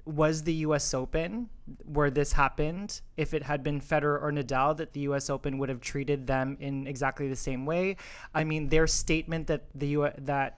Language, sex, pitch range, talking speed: English, male, 140-160 Hz, 200 wpm